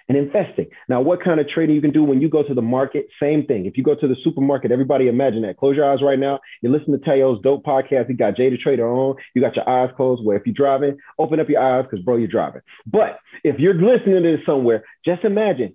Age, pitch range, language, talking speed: 30-49, 120-155 Hz, English, 265 wpm